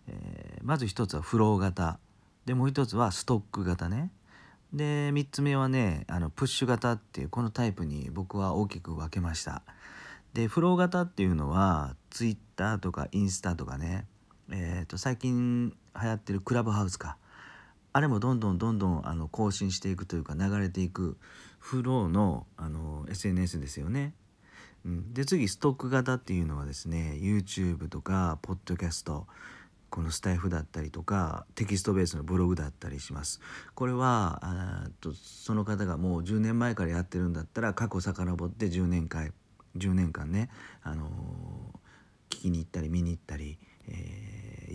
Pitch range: 85-110 Hz